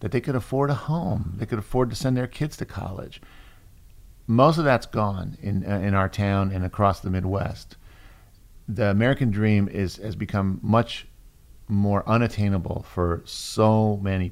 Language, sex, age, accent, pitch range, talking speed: English, male, 50-69, American, 95-120 Hz, 170 wpm